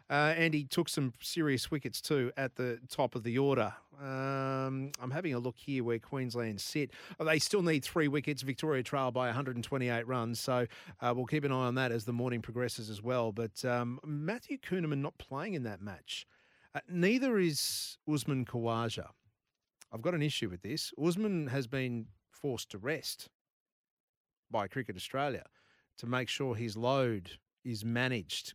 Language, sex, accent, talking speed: English, male, Australian, 175 wpm